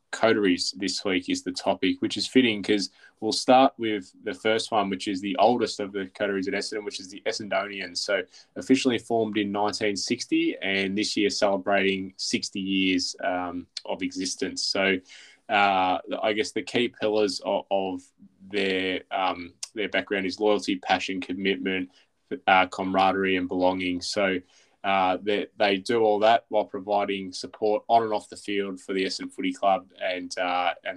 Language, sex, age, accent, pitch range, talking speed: English, male, 20-39, Australian, 95-110 Hz, 170 wpm